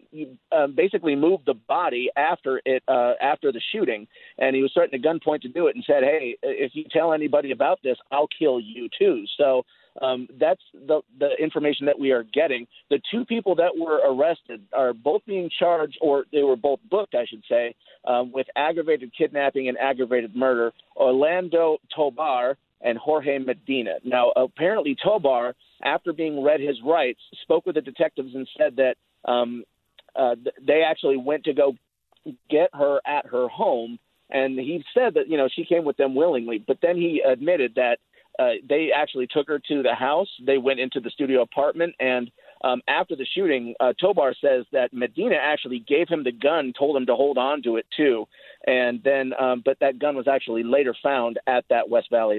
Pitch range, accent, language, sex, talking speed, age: 125-160 Hz, American, English, male, 195 wpm, 40-59